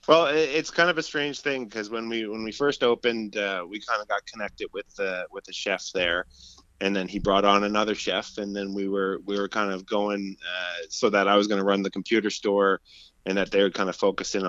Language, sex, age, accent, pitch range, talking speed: English, male, 30-49, American, 95-115 Hz, 250 wpm